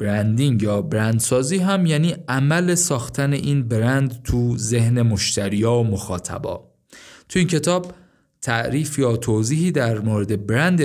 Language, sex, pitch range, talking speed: Persian, male, 105-140 Hz, 135 wpm